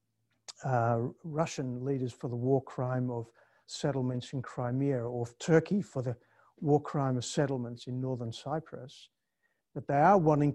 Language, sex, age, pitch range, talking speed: English, male, 50-69, 125-155 Hz, 155 wpm